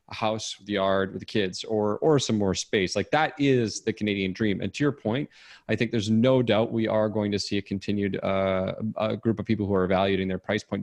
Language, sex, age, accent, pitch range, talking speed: English, male, 30-49, American, 95-115 Hz, 245 wpm